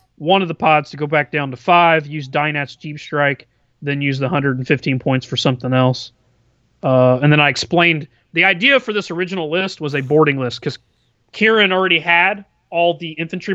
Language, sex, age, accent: English, male, 30-49, American